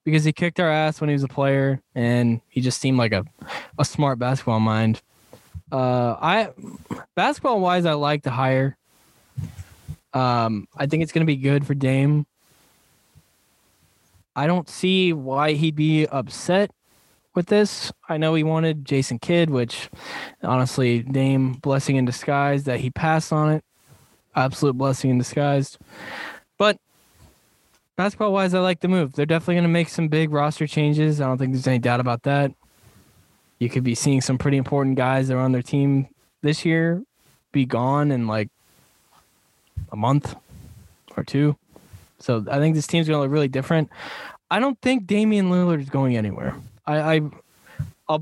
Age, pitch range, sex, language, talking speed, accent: 10-29, 130-160 Hz, male, English, 170 wpm, American